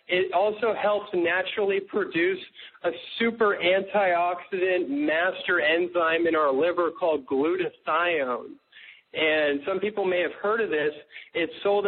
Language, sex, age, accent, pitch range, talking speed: English, male, 40-59, American, 170-225 Hz, 125 wpm